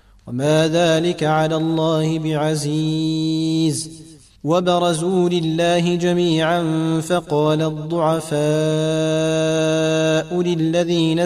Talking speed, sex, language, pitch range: 60 wpm, male, Arabic, 155-160 Hz